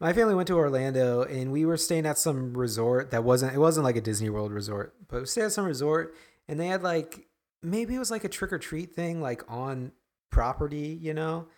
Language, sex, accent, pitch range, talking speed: English, male, American, 115-160 Hz, 235 wpm